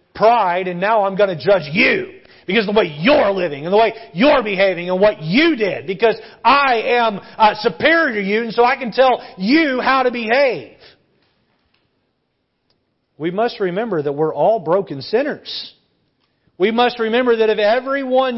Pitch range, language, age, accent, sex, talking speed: 165-225 Hz, English, 40-59, American, male, 175 wpm